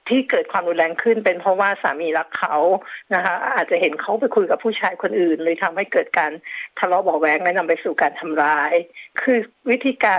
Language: Thai